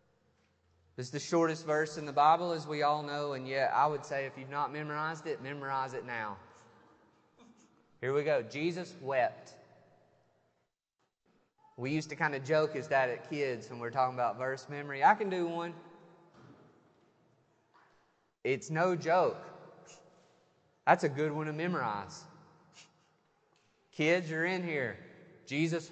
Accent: American